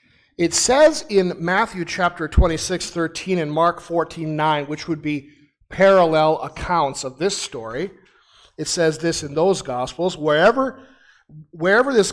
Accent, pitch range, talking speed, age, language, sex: American, 145-180 Hz, 130 wpm, 40-59, English, male